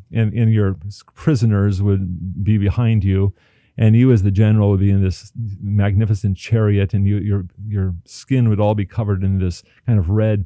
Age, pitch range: 40-59, 95-110 Hz